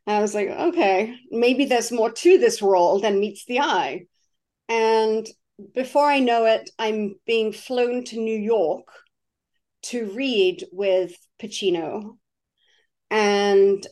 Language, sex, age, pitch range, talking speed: English, female, 40-59, 200-245 Hz, 130 wpm